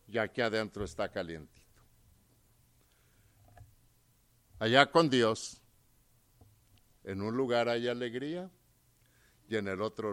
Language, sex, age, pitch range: English, male, 60-79, 105-125 Hz